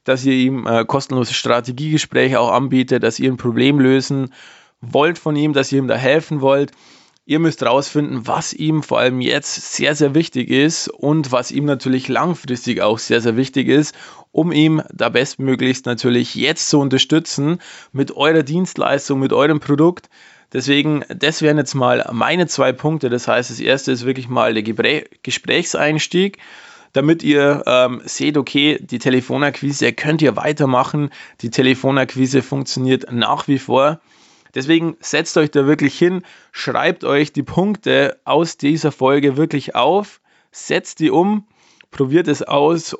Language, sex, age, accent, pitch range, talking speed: German, male, 20-39, German, 130-155 Hz, 155 wpm